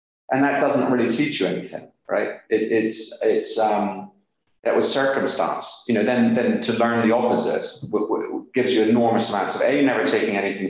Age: 40-59